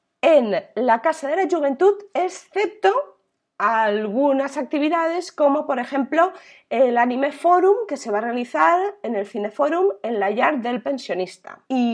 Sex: female